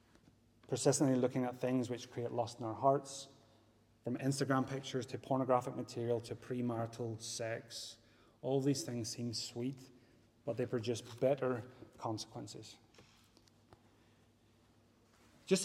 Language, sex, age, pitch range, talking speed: English, male, 30-49, 115-135 Hz, 115 wpm